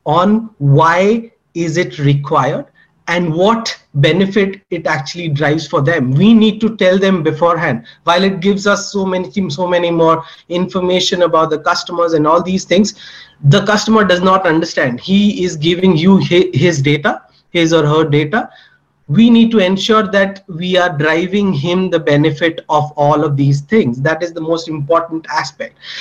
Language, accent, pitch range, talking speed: English, Indian, 160-205 Hz, 170 wpm